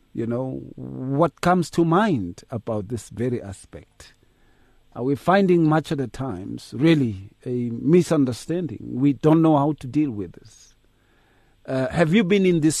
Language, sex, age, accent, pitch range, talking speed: English, male, 50-69, South African, 120-170 Hz, 160 wpm